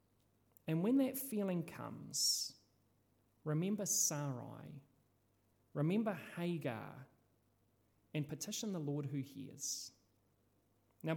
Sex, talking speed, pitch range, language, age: male, 85 wpm, 130-190 Hz, English, 30-49